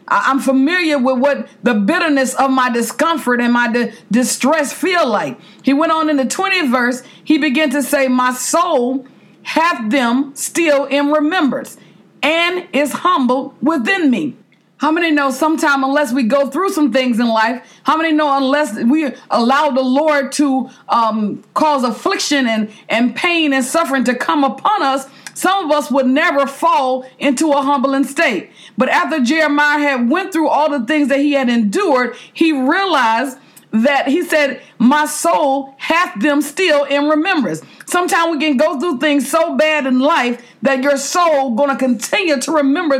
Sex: female